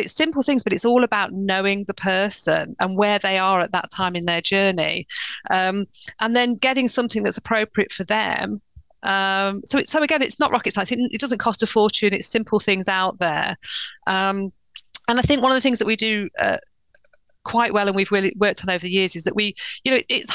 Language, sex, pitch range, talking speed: English, female, 185-220 Hz, 230 wpm